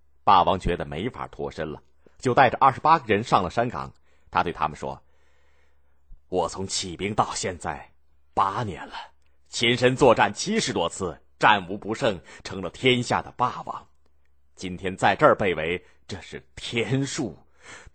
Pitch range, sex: 70-115 Hz, male